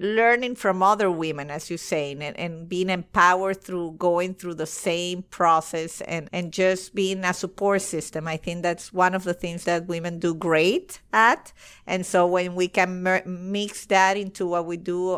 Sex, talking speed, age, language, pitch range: female, 185 wpm, 50-69, English, 175-210 Hz